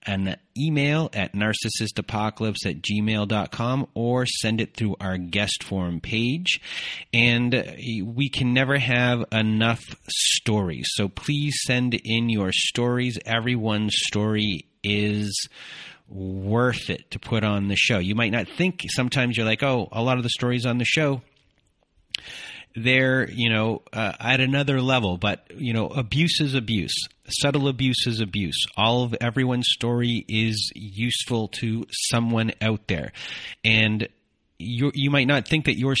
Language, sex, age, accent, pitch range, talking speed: English, male, 30-49, American, 105-125 Hz, 145 wpm